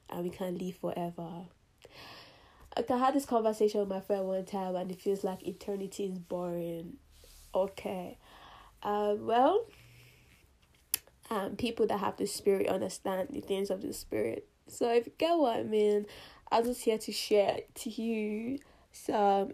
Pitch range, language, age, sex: 185-210 Hz, English, 10-29, female